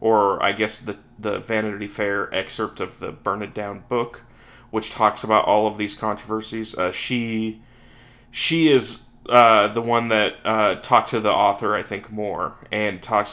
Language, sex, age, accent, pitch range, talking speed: English, male, 30-49, American, 105-130 Hz, 175 wpm